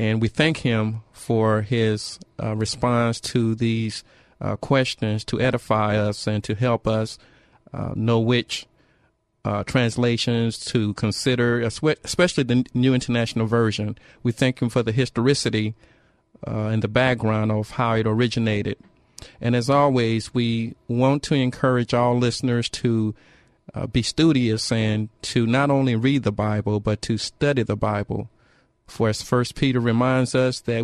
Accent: American